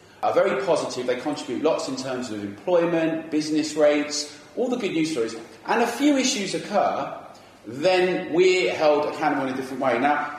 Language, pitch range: English, 145-190 Hz